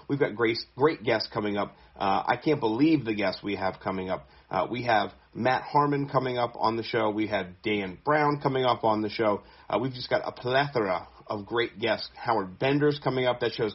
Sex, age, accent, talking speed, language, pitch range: male, 40-59, American, 225 wpm, English, 120-160 Hz